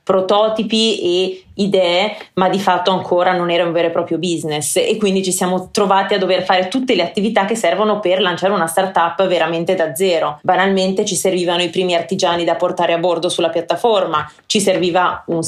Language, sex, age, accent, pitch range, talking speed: Italian, female, 30-49, native, 180-205 Hz, 195 wpm